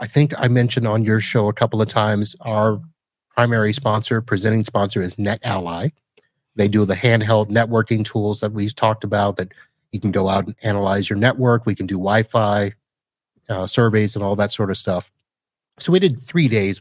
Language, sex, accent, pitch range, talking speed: English, male, American, 100-120 Hz, 190 wpm